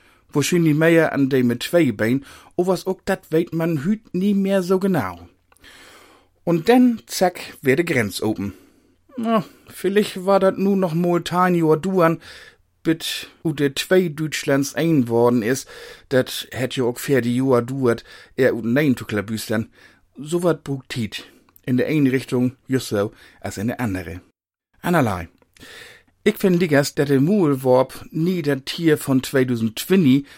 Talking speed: 155 wpm